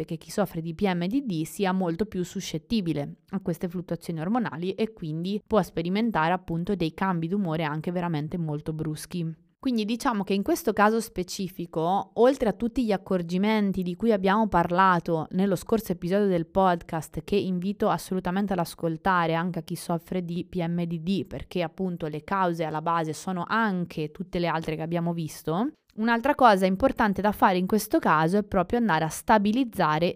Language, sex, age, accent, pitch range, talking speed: Italian, female, 20-39, native, 165-205 Hz, 165 wpm